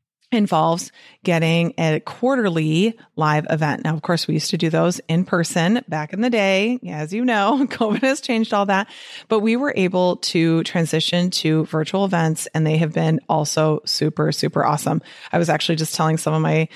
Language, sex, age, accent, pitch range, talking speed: English, female, 30-49, American, 165-215 Hz, 190 wpm